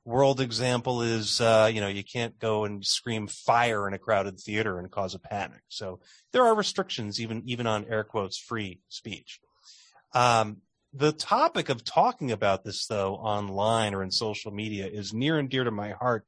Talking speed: 190 wpm